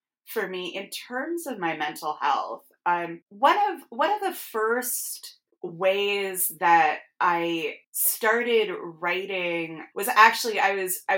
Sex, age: female, 20-39